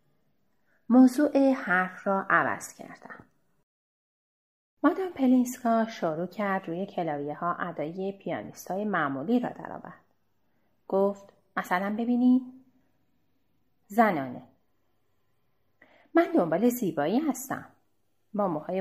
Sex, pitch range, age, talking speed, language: female, 180-240 Hz, 30-49, 80 wpm, Persian